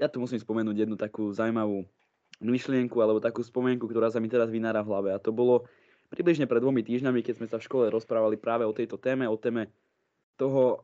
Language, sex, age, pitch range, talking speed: Slovak, male, 20-39, 110-135 Hz, 210 wpm